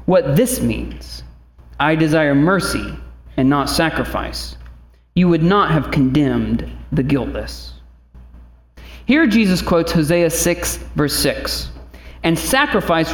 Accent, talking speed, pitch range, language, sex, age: American, 115 wpm, 125-195 Hz, English, male, 40-59